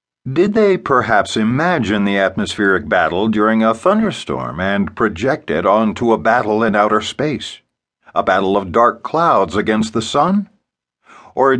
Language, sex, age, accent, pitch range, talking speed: English, male, 50-69, American, 105-130 Hz, 145 wpm